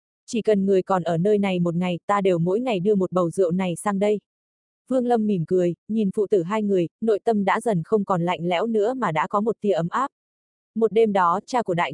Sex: female